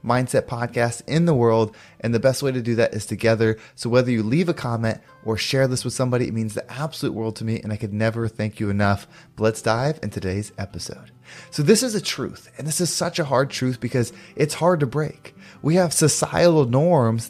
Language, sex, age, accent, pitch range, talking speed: English, male, 20-39, American, 115-160 Hz, 230 wpm